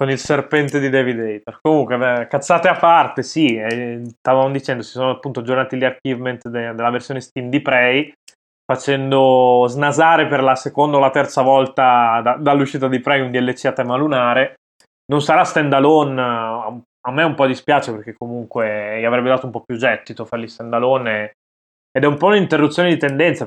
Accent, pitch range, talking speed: native, 120-135 Hz, 190 wpm